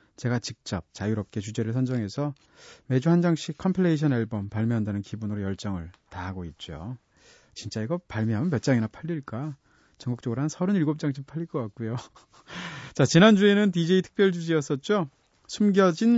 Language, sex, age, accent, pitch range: Korean, male, 30-49, native, 110-160 Hz